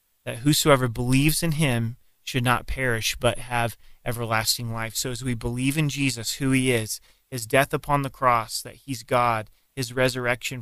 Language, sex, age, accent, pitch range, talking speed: English, male, 30-49, American, 115-140 Hz, 175 wpm